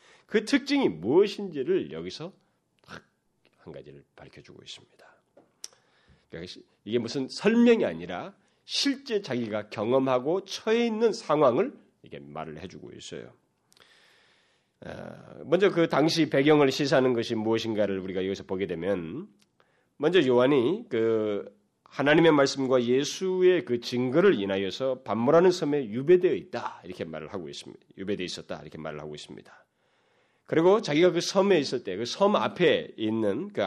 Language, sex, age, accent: Korean, male, 40-59, native